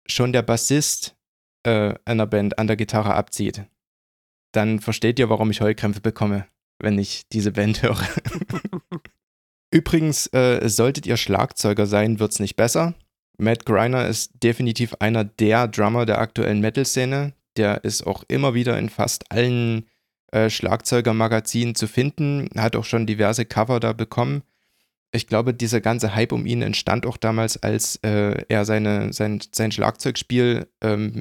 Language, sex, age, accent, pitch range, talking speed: German, male, 20-39, German, 105-120 Hz, 150 wpm